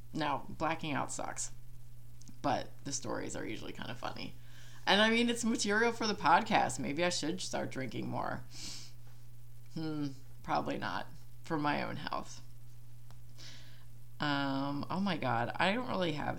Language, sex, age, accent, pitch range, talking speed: English, female, 20-39, American, 120-140 Hz, 150 wpm